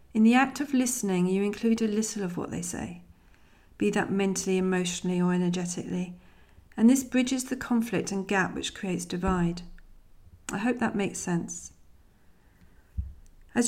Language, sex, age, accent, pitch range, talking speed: English, female, 40-59, British, 175-220 Hz, 155 wpm